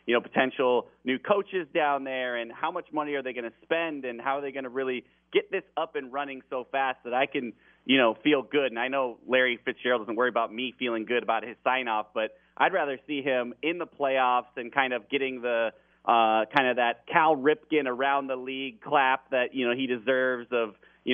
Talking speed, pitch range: 235 wpm, 125-155 Hz